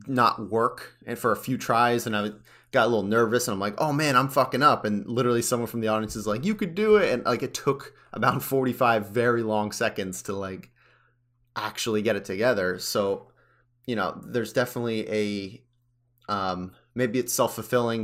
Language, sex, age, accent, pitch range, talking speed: English, male, 30-49, American, 105-120 Hz, 195 wpm